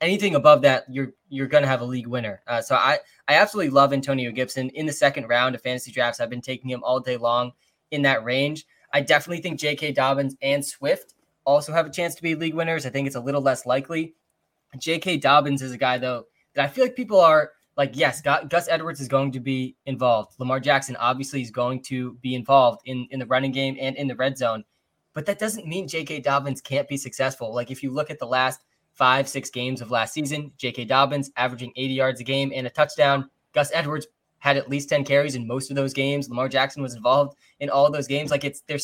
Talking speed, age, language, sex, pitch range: 235 wpm, 10-29, English, male, 130-150 Hz